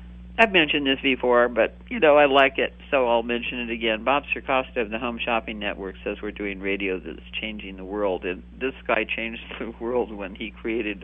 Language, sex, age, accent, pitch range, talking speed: English, male, 50-69, American, 90-120 Hz, 210 wpm